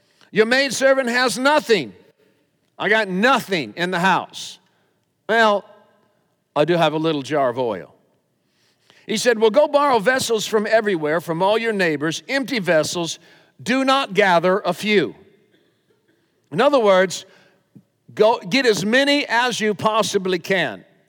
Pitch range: 180-240 Hz